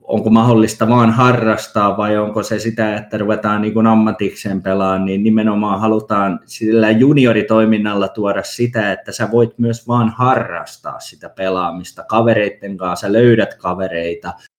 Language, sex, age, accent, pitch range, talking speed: Finnish, male, 20-39, native, 100-125 Hz, 140 wpm